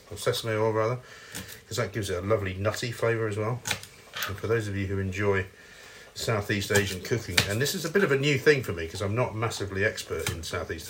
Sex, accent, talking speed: male, British, 230 wpm